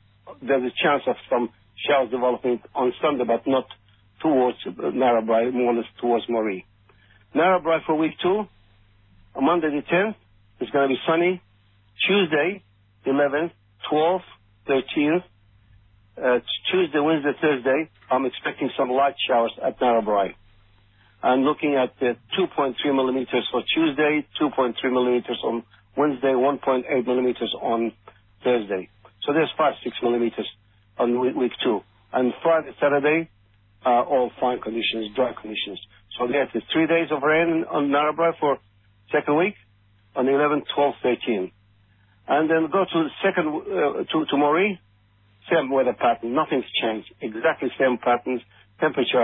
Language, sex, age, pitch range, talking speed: English, male, 50-69, 105-145 Hz, 135 wpm